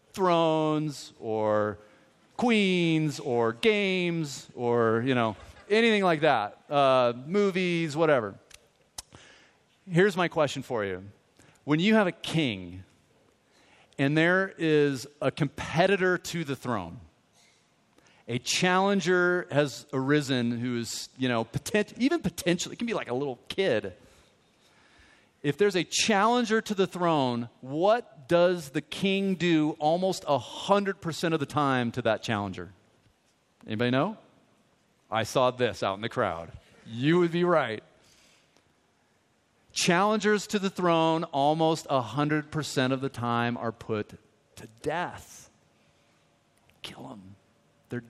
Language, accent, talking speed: English, American, 120 wpm